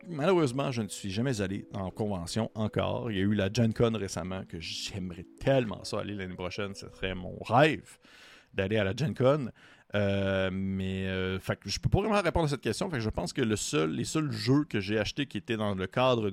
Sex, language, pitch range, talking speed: male, French, 95-125 Hz, 235 wpm